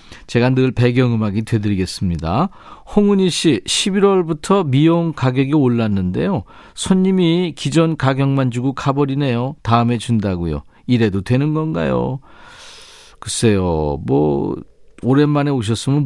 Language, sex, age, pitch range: Korean, male, 40-59, 115-165 Hz